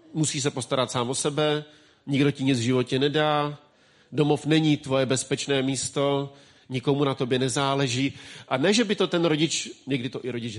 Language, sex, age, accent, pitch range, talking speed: Czech, male, 40-59, native, 135-165 Hz, 180 wpm